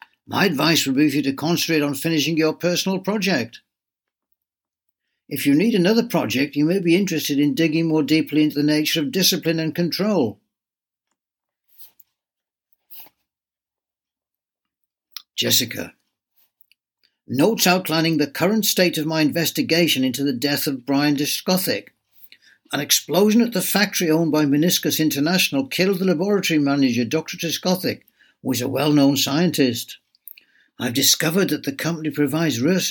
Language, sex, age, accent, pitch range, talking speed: English, male, 60-79, British, 145-180 Hz, 135 wpm